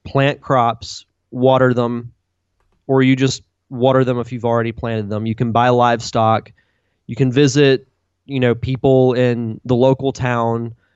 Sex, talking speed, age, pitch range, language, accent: male, 155 wpm, 20-39, 115-135 Hz, English, American